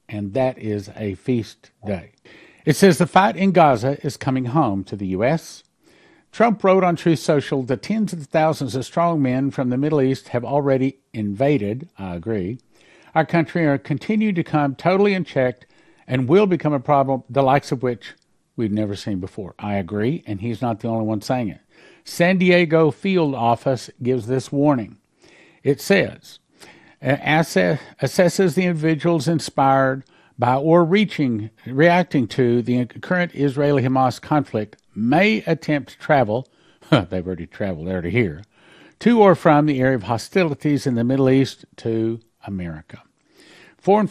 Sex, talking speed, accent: male, 160 wpm, American